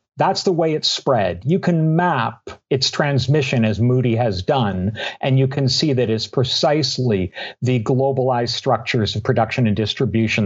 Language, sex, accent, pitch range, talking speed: English, male, American, 120-165 Hz, 160 wpm